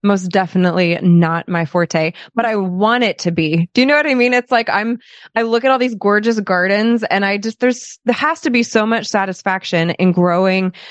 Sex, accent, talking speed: female, American, 220 wpm